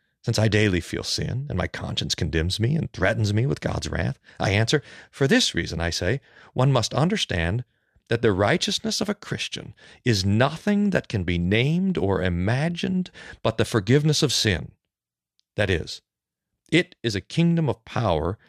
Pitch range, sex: 95-135 Hz, male